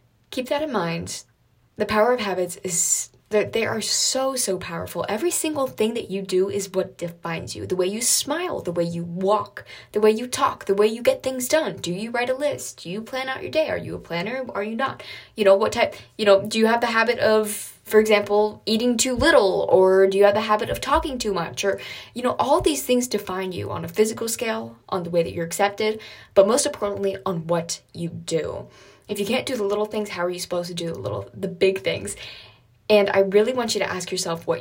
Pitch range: 175-220 Hz